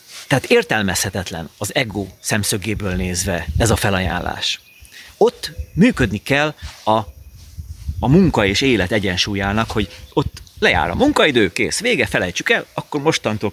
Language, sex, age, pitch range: Hungarian, male, 30-49, 100-155 Hz